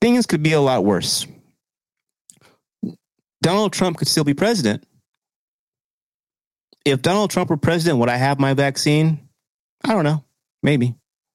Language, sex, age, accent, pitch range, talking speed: English, male, 30-49, American, 125-150 Hz, 135 wpm